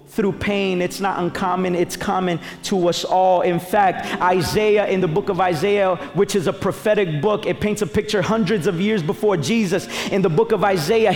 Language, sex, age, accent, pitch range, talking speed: English, male, 30-49, American, 190-235 Hz, 200 wpm